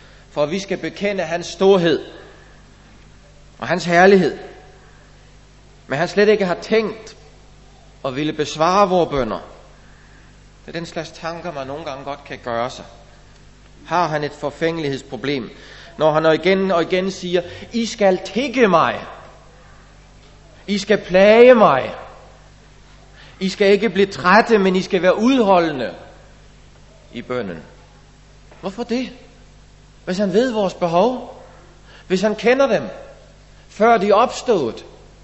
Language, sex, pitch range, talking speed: Danish, male, 140-205 Hz, 130 wpm